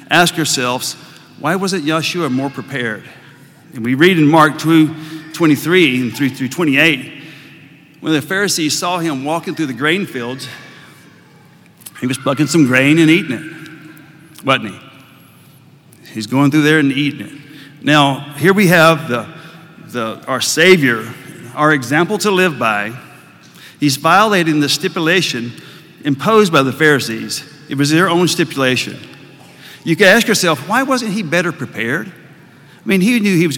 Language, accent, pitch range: English, American, 135-175 Hz